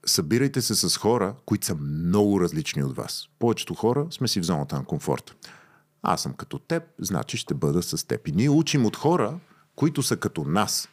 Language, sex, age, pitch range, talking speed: Bulgarian, male, 40-59, 95-145 Hz, 200 wpm